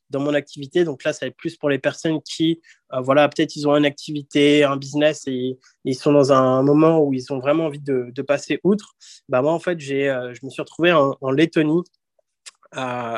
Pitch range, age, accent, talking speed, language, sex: 140-165 Hz, 20-39, French, 230 wpm, French, male